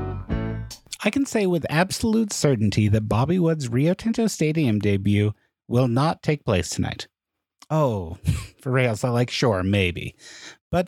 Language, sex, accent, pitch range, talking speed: English, male, American, 105-150 Hz, 145 wpm